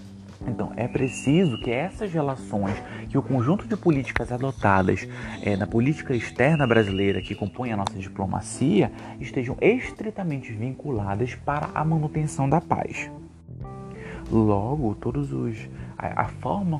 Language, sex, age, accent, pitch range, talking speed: English, male, 30-49, Brazilian, 105-150 Hz, 125 wpm